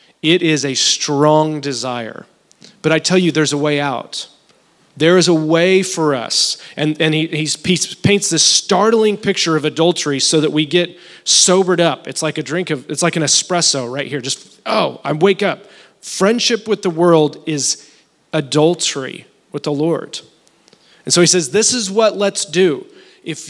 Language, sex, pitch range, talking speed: English, male, 155-190 Hz, 180 wpm